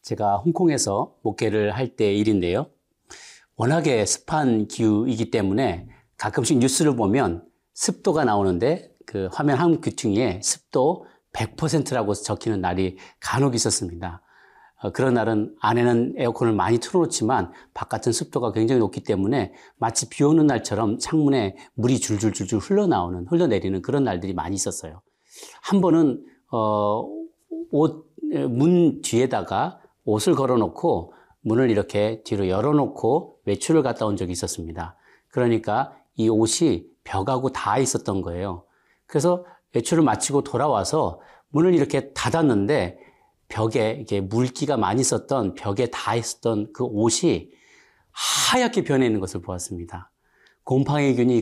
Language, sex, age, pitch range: Korean, male, 40-59, 100-145 Hz